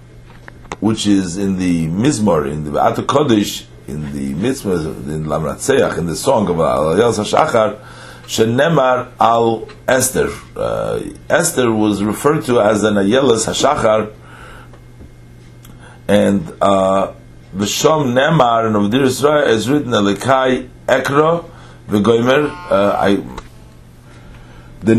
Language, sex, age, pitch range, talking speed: English, male, 50-69, 100-130 Hz, 115 wpm